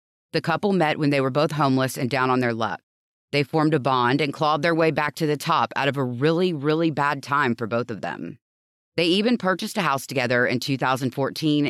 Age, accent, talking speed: 30-49, American, 225 wpm